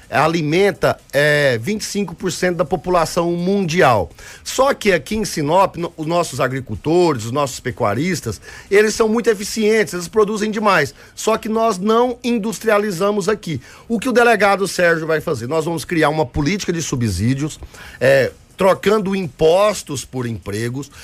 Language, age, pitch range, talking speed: Portuguese, 50-69, 150-195 Hz, 135 wpm